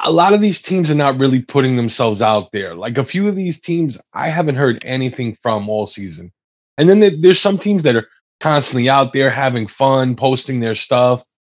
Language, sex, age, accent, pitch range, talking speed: English, male, 20-39, American, 120-170 Hz, 210 wpm